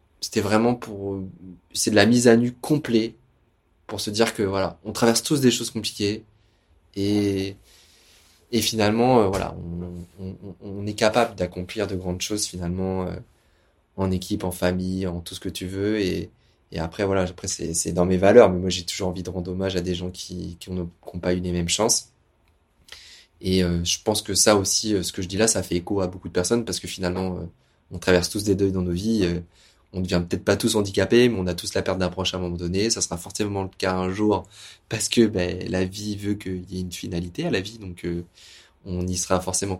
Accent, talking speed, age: French, 235 wpm, 20-39